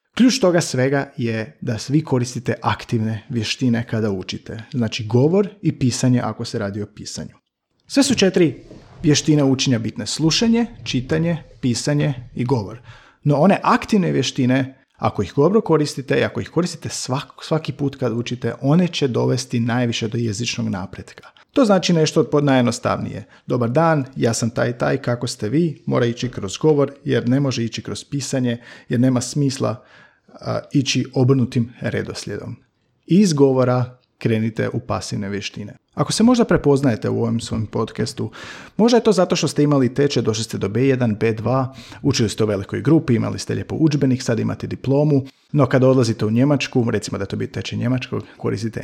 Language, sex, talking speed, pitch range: Croatian, male, 165 wpm, 115-145 Hz